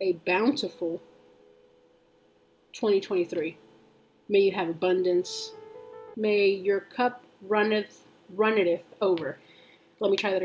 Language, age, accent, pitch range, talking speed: English, 30-49, American, 170-200 Hz, 100 wpm